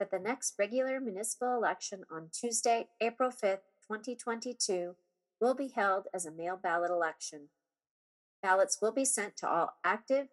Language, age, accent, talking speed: English, 40-59, American, 150 wpm